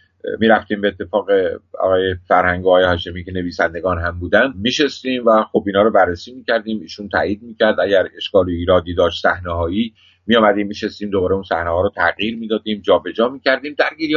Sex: male